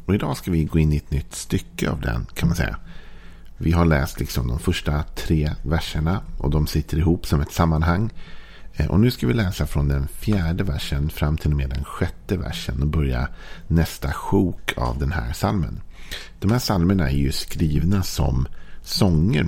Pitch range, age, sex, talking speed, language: 75-90 Hz, 50-69, male, 190 wpm, Swedish